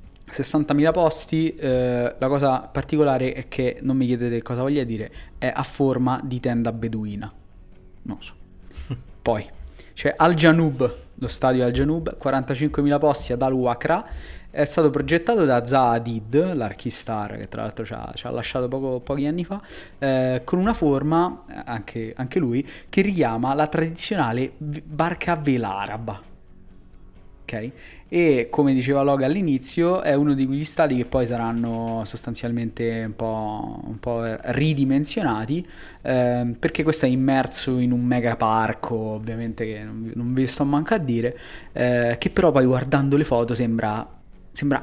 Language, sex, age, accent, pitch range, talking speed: Italian, male, 20-39, native, 115-145 Hz, 150 wpm